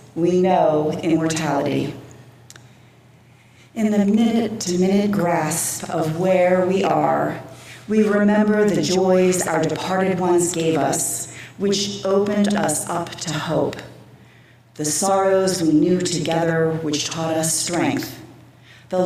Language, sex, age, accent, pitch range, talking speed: English, female, 40-59, American, 140-185 Hz, 115 wpm